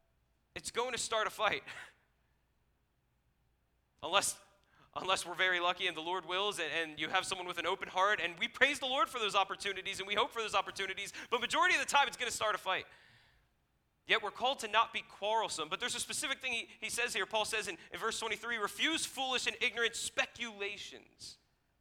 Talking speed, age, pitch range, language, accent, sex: 210 wpm, 30-49, 145-220 Hz, English, American, male